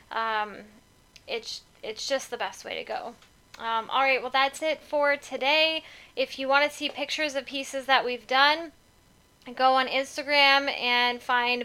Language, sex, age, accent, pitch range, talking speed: English, female, 10-29, American, 240-275 Hz, 170 wpm